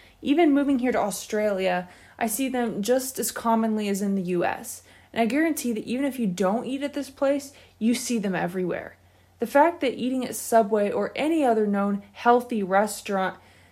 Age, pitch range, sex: 20-39, 200-255 Hz, female